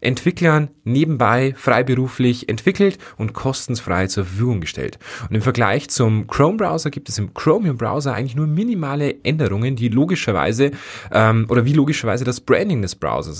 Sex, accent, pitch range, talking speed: male, German, 110-140 Hz, 145 wpm